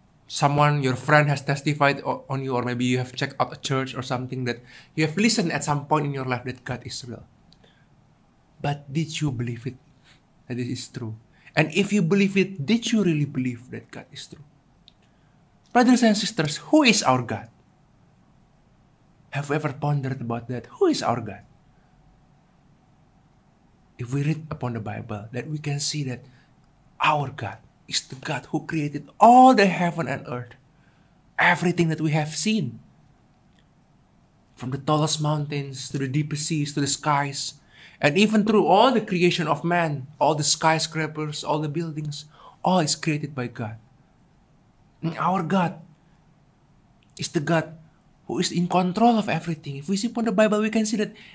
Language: English